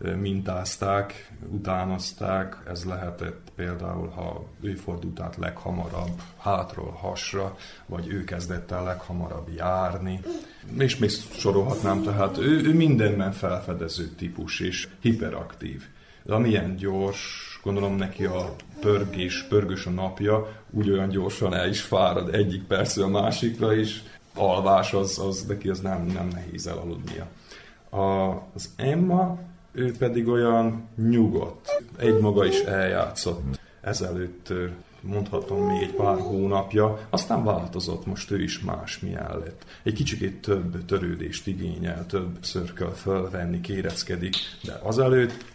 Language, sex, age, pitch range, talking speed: Hungarian, male, 30-49, 90-110 Hz, 125 wpm